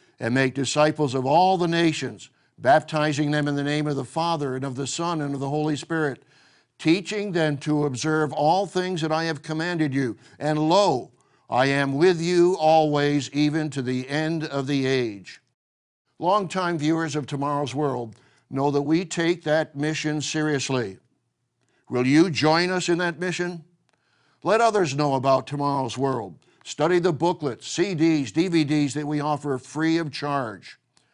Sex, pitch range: male, 135-160 Hz